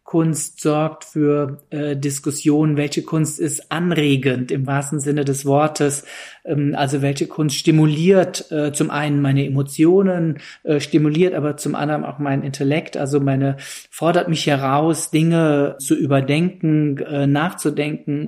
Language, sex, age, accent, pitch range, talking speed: German, male, 40-59, German, 140-155 Hz, 140 wpm